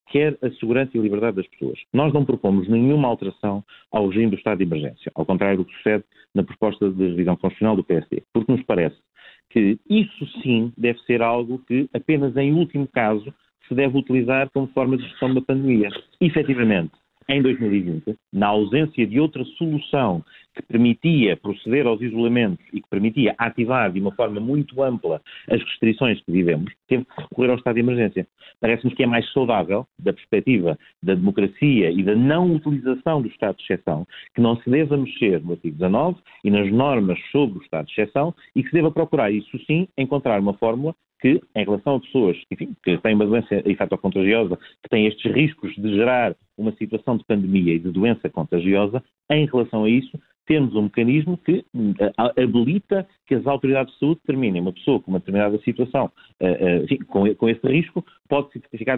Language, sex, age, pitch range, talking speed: Portuguese, male, 40-59, 105-140 Hz, 185 wpm